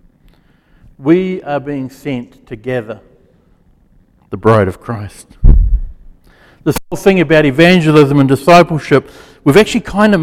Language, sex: English, male